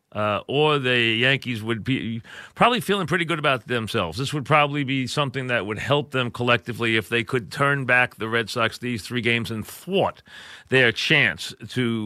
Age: 40-59